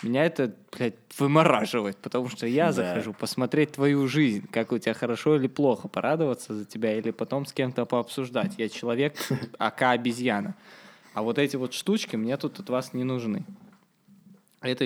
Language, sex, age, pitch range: Russian, male, 20-39, 115-145 Hz